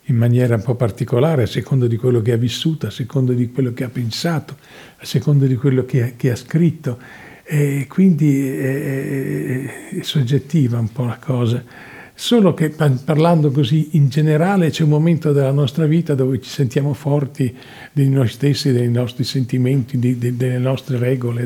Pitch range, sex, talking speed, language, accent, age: 130-155 Hz, male, 180 wpm, Italian, native, 50-69